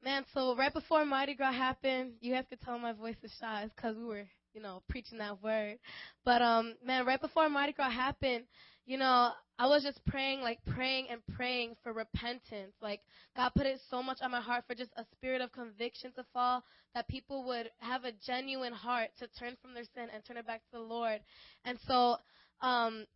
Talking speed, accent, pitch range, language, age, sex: 210 wpm, American, 240-275 Hz, English, 10-29, female